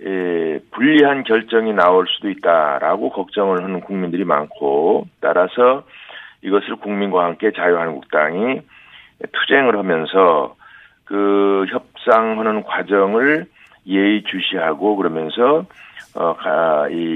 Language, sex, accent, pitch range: Korean, male, native, 90-110 Hz